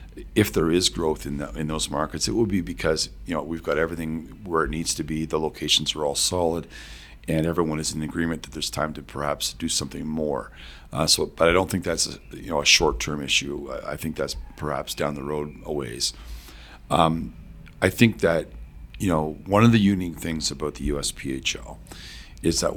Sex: male